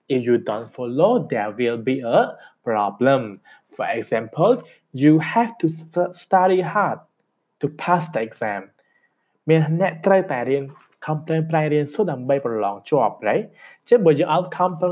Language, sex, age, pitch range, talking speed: English, male, 20-39, 130-175 Hz, 100 wpm